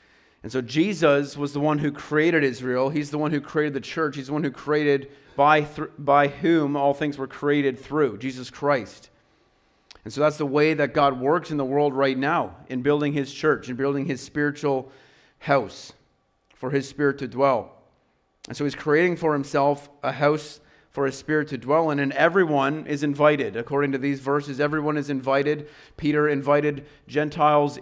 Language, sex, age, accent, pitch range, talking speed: English, male, 30-49, American, 135-150 Hz, 190 wpm